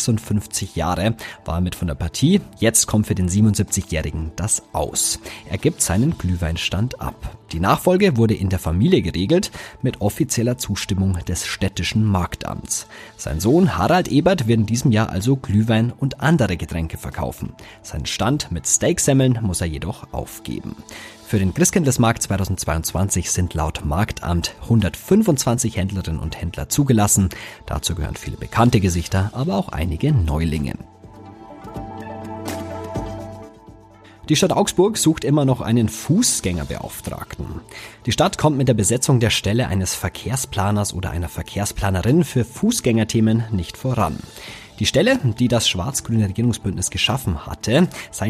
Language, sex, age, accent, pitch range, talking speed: German, male, 30-49, German, 90-120 Hz, 135 wpm